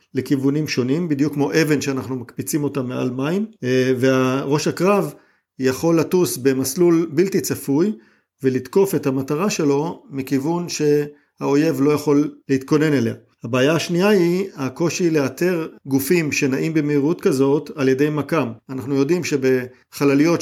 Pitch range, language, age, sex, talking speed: 135-165 Hz, Hebrew, 50-69, male, 125 wpm